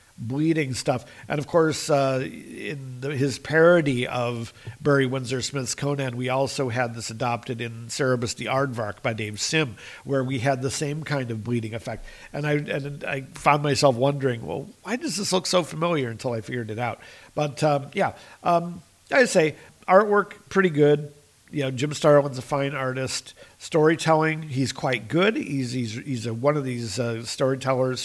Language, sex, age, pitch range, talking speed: English, male, 50-69, 125-150 Hz, 180 wpm